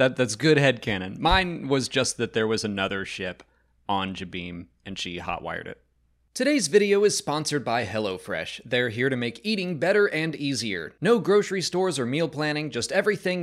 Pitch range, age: 115-170 Hz, 30-49